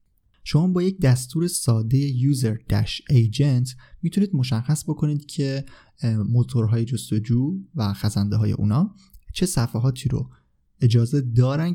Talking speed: 105 wpm